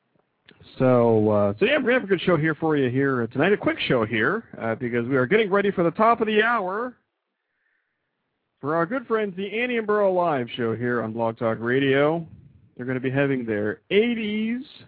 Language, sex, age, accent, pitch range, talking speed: English, male, 40-59, American, 110-180 Hz, 210 wpm